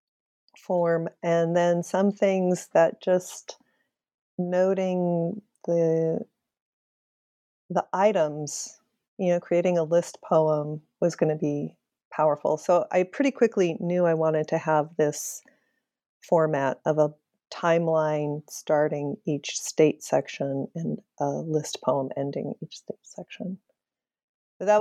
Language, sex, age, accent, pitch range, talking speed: English, female, 40-59, American, 160-215 Hz, 120 wpm